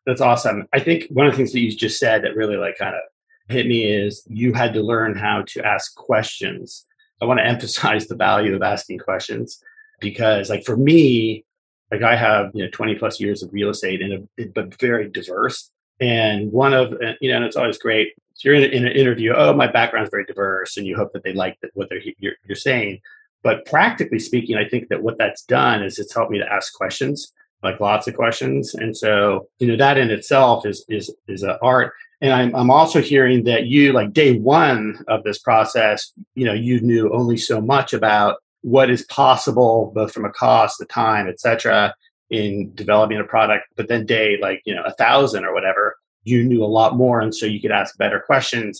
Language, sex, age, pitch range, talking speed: English, male, 30-49, 105-135 Hz, 215 wpm